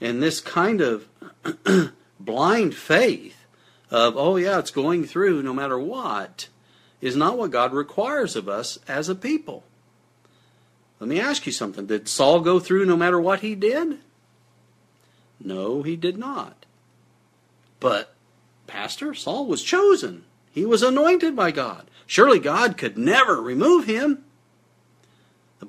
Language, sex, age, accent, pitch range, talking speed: English, male, 50-69, American, 120-185 Hz, 140 wpm